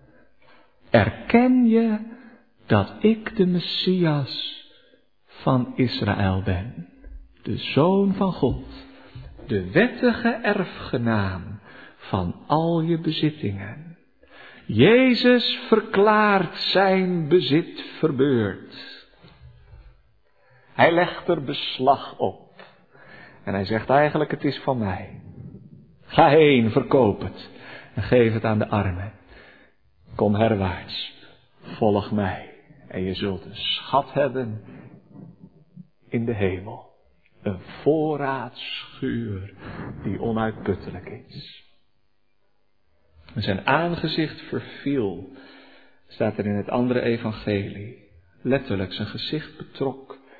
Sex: male